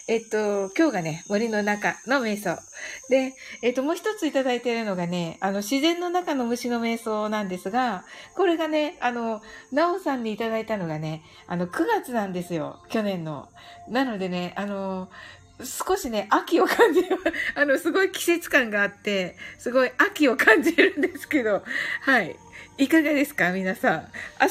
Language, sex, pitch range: Japanese, female, 200-310 Hz